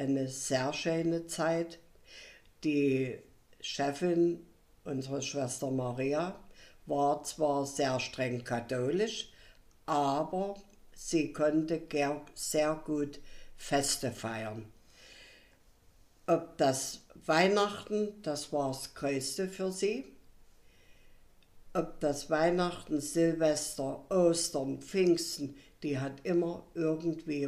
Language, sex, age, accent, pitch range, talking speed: German, female, 60-79, German, 135-180 Hz, 85 wpm